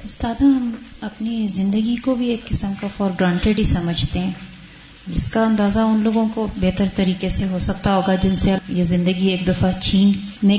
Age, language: 20-39, Urdu